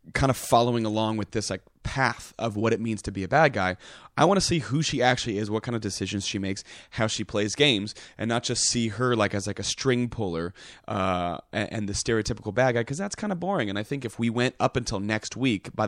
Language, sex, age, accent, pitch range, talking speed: English, male, 30-49, American, 100-125 Hz, 255 wpm